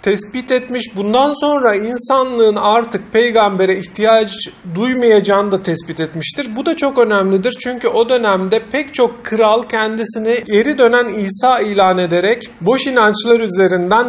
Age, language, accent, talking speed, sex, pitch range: 40-59, Turkish, native, 130 wpm, male, 190-235 Hz